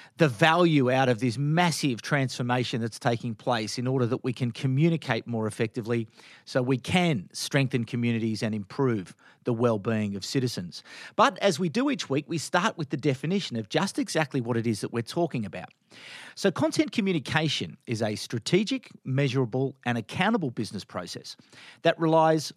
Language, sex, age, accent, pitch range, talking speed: English, male, 40-59, Australian, 125-180 Hz, 170 wpm